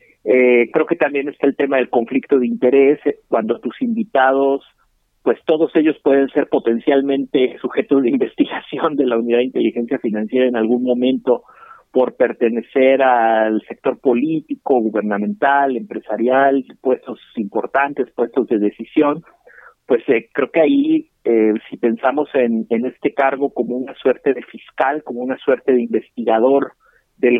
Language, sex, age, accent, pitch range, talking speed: Spanish, male, 50-69, Mexican, 120-145 Hz, 150 wpm